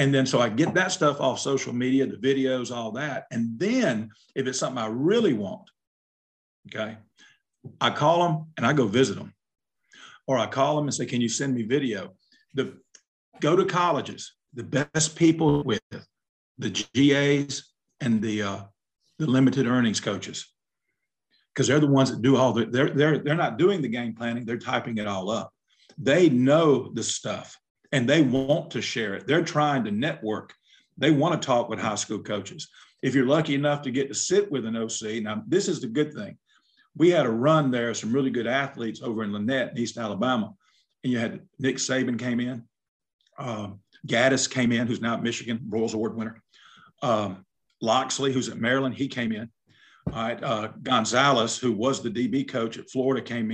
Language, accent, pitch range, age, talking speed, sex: English, American, 115-140 Hz, 50-69, 195 wpm, male